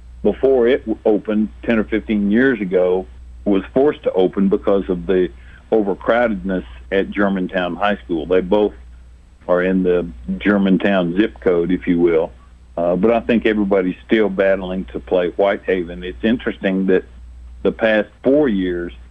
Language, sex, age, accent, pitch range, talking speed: English, male, 60-79, American, 80-105 Hz, 150 wpm